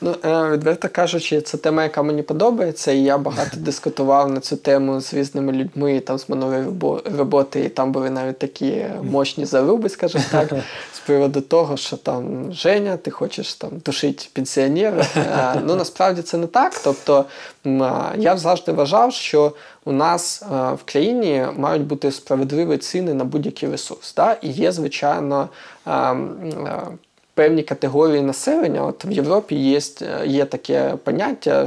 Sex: male